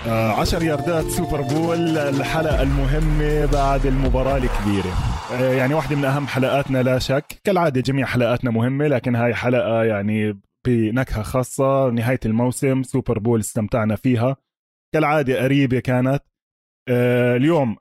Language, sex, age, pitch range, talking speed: Arabic, male, 20-39, 120-160 Hz, 120 wpm